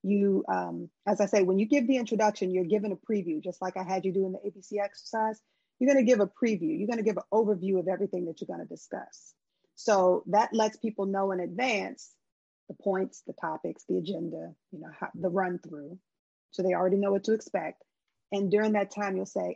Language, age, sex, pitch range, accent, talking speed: English, 30-49, female, 185-215 Hz, American, 225 wpm